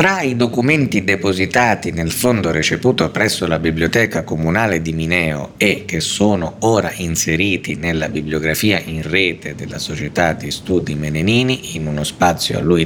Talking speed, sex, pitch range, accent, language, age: 150 wpm, male, 75-105 Hz, native, Italian, 50-69